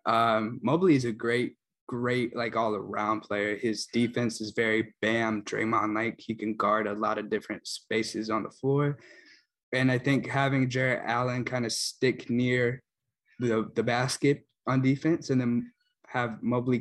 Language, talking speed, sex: English, 165 wpm, male